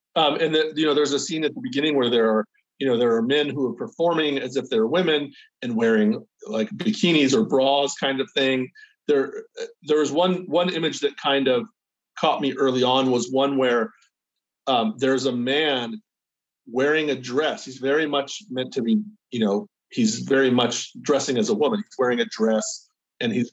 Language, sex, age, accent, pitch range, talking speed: English, male, 40-59, American, 130-215 Hz, 200 wpm